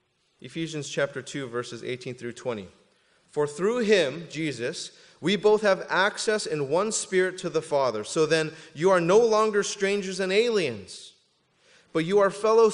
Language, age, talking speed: English, 30-49, 160 wpm